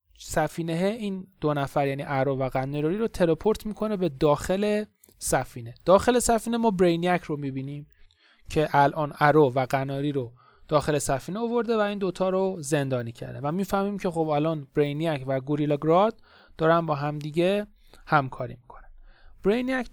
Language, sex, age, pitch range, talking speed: Persian, male, 30-49, 150-195 Hz, 150 wpm